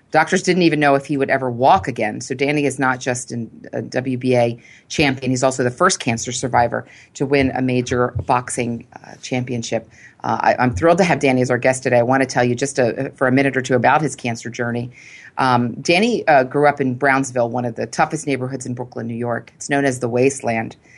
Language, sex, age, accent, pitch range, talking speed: English, female, 40-59, American, 125-145 Hz, 220 wpm